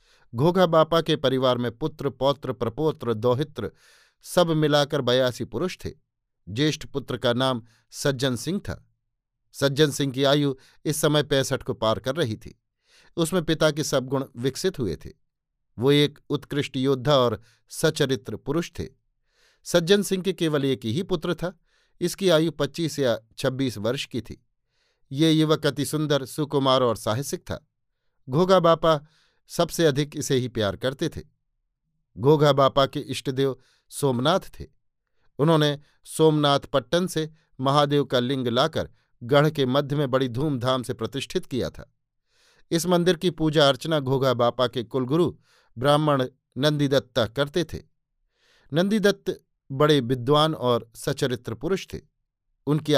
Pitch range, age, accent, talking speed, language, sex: 125-155 Hz, 50-69, native, 145 wpm, Hindi, male